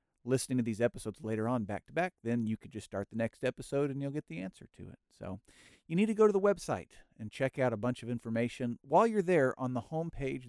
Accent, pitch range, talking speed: American, 110-140 Hz, 255 wpm